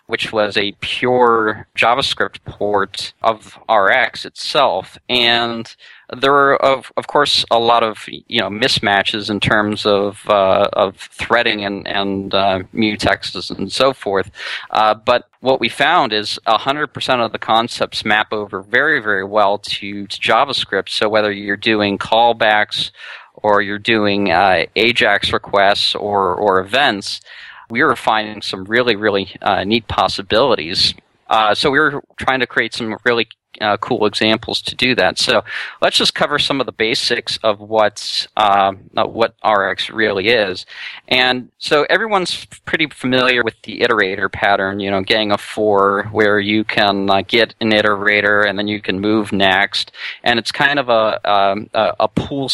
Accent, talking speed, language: American, 160 wpm, English